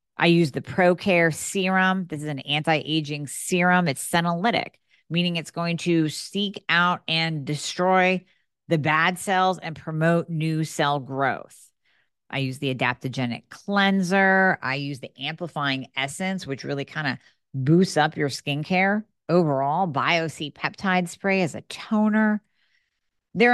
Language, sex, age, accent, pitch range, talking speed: English, female, 40-59, American, 140-185 Hz, 140 wpm